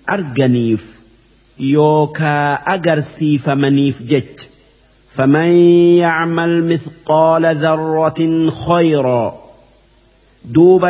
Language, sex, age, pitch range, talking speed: Arabic, male, 50-69, 140-175 Hz, 60 wpm